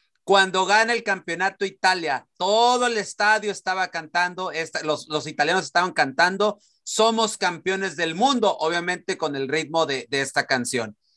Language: Spanish